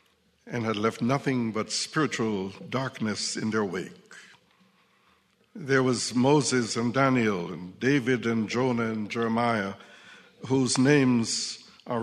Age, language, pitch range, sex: 60-79, English, 110-140 Hz, male